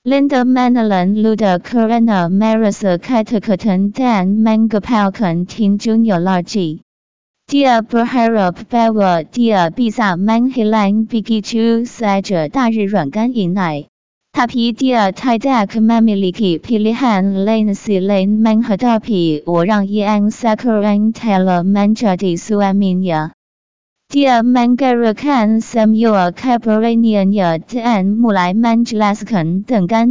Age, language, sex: 20-39, Indonesian, female